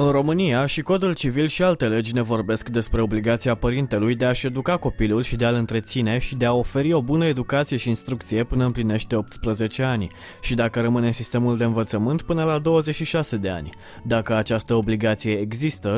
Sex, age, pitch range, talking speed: male, 20-39, 120-200 Hz, 185 wpm